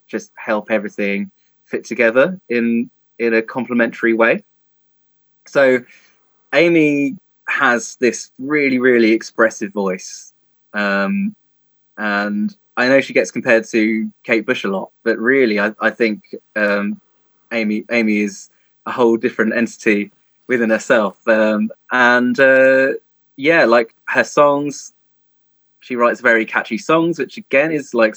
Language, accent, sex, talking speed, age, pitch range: English, British, male, 130 wpm, 20-39, 110-150 Hz